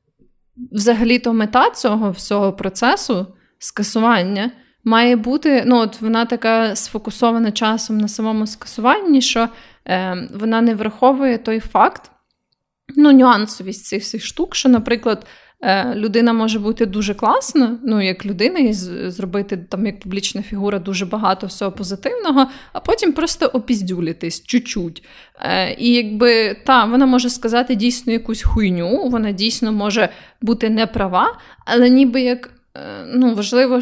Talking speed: 130 wpm